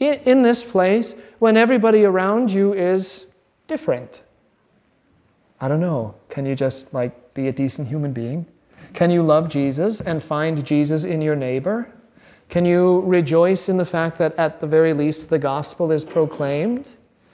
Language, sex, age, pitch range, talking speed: English, male, 40-59, 160-200 Hz, 160 wpm